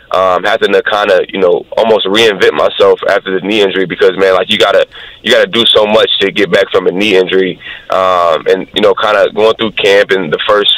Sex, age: male, 20-39